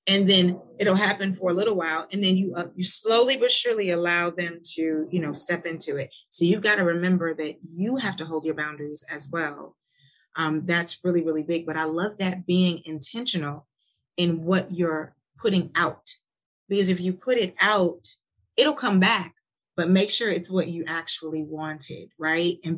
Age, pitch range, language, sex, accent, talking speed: 30-49, 160-190 Hz, English, female, American, 190 wpm